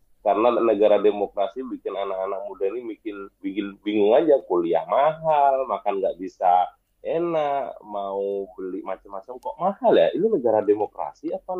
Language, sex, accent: Indonesian, male, native